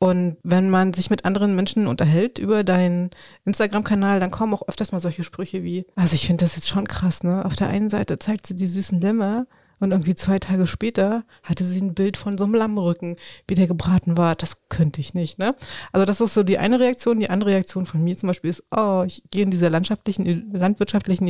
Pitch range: 180-215 Hz